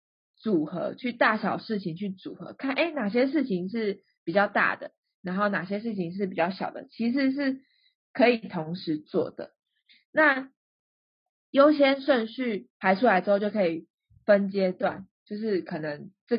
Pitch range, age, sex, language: 175-230 Hz, 20-39, female, Chinese